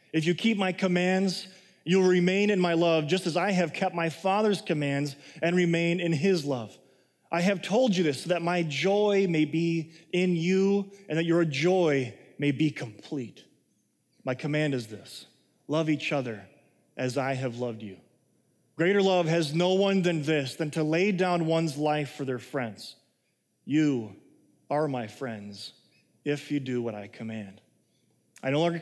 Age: 30-49